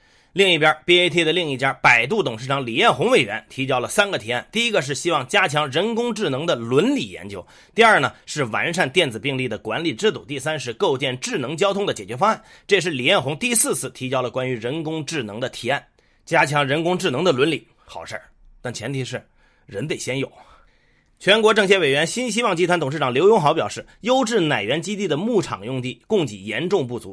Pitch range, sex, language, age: 130-200 Hz, male, Chinese, 30-49